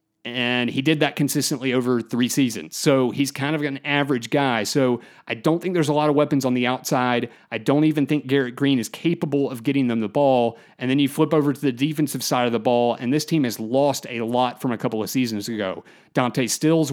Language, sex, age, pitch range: English, male, 30-49, 125-150 Hz